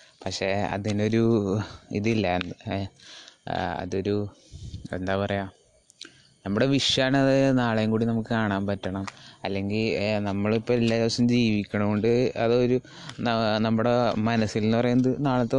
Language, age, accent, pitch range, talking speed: Malayalam, 20-39, native, 100-115 Hz, 95 wpm